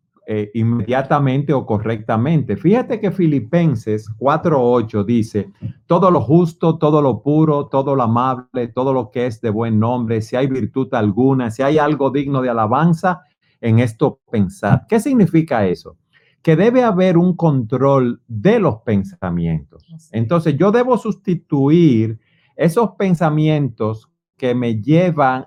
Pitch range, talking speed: 115-160 Hz, 135 wpm